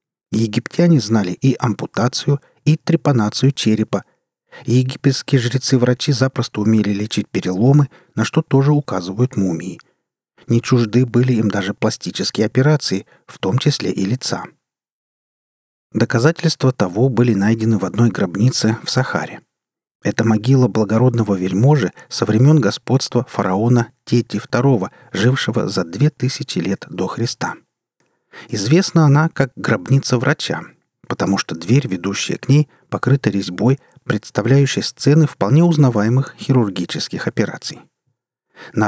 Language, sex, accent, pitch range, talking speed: Russian, male, native, 110-140 Hz, 115 wpm